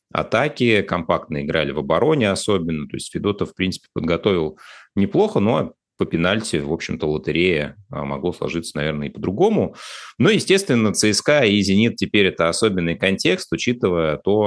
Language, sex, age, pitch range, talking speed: Russian, male, 30-49, 75-95 Hz, 145 wpm